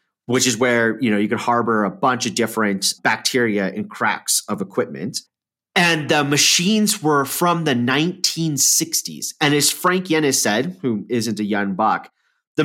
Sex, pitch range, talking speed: male, 115-155 Hz, 165 wpm